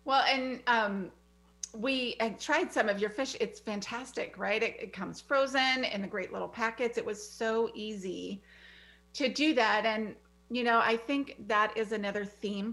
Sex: female